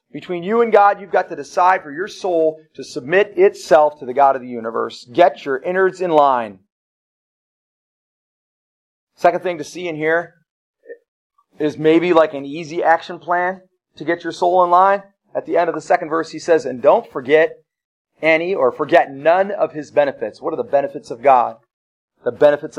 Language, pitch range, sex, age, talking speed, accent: English, 160-200 Hz, male, 40-59, 185 wpm, American